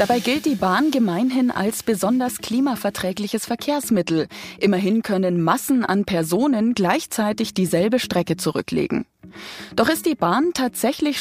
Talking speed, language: 125 wpm, German